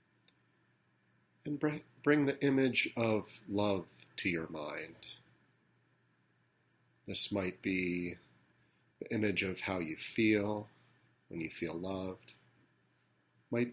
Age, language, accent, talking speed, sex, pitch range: 40-59, English, American, 100 wpm, male, 95-115 Hz